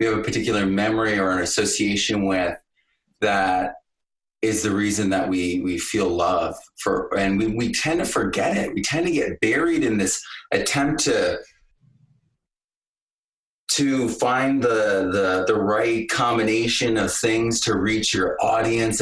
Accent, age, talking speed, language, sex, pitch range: American, 30-49, 150 wpm, English, male, 100-120 Hz